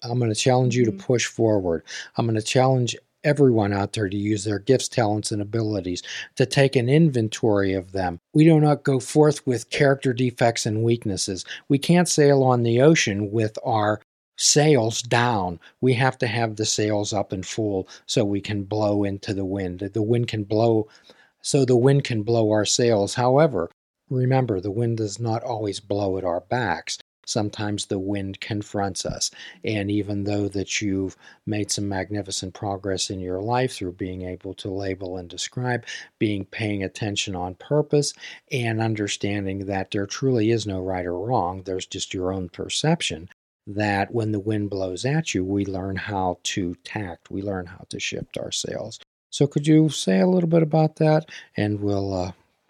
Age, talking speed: 40-59, 185 wpm